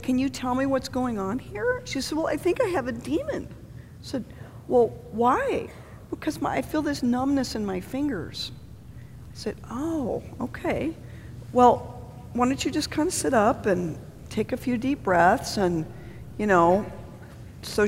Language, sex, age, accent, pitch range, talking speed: English, female, 50-69, American, 165-270 Hz, 175 wpm